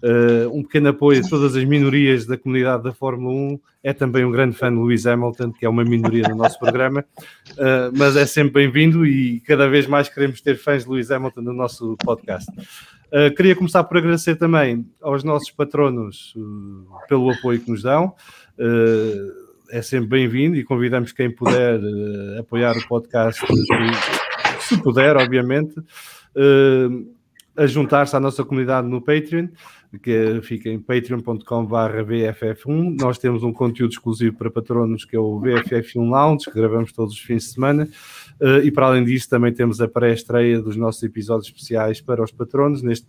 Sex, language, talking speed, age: male, English, 170 wpm, 20-39